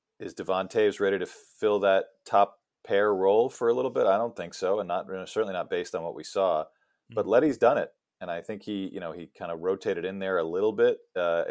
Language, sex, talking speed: English, male, 240 wpm